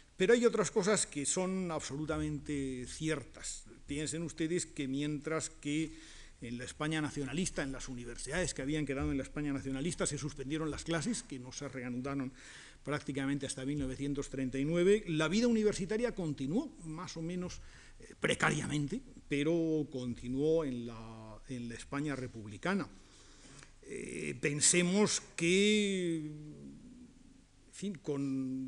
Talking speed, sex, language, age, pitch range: 120 wpm, male, Spanish, 50-69, 135-165 Hz